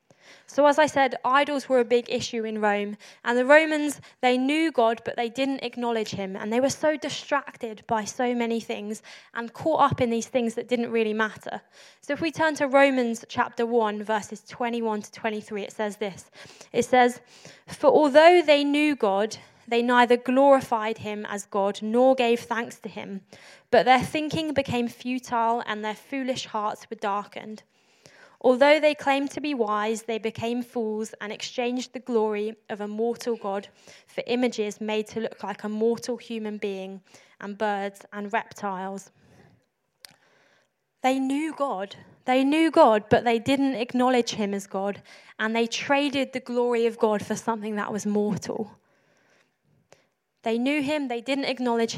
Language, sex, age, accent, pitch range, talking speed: English, female, 10-29, British, 215-255 Hz, 170 wpm